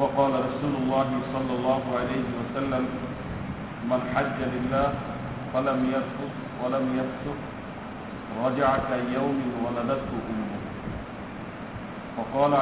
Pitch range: 125-135 Hz